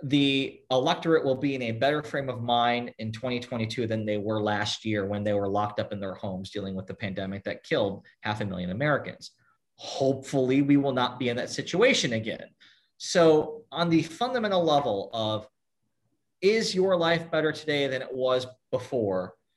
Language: English